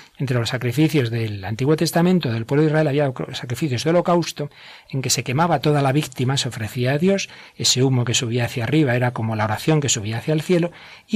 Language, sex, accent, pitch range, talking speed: Spanish, male, Spanish, 120-155 Hz, 220 wpm